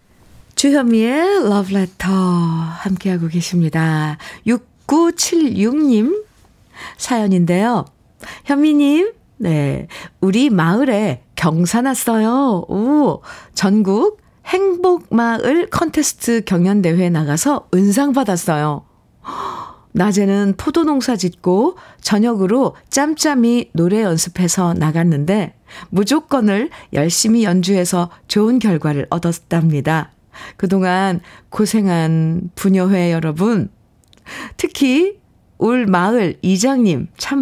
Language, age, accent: Korean, 50-69, native